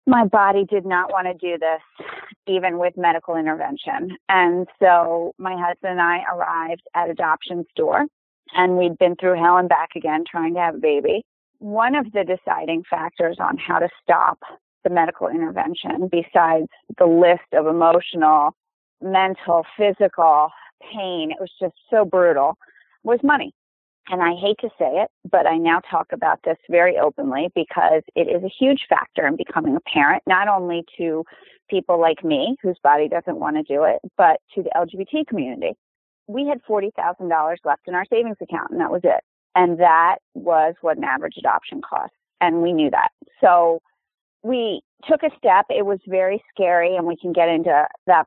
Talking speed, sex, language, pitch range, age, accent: 180 wpm, female, English, 165-205 Hz, 30-49, American